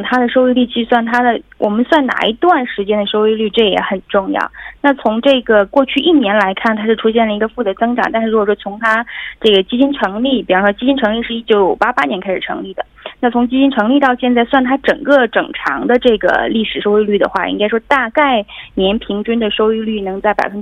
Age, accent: 20-39, Chinese